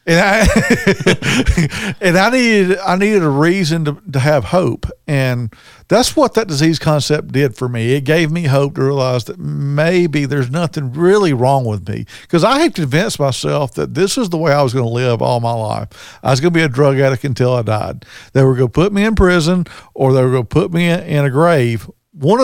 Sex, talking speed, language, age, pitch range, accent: male, 225 wpm, English, 50-69, 130-175 Hz, American